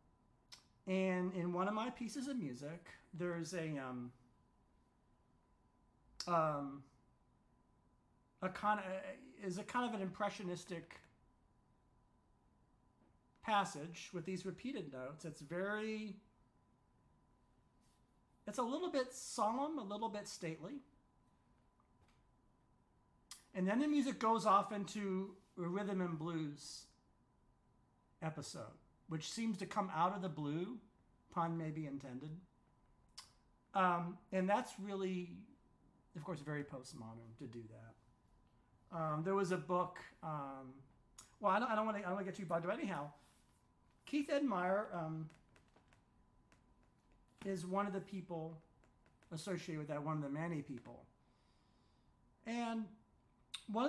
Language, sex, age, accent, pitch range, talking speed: English, male, 40-59, American, 155-210 Hz, 120 wpm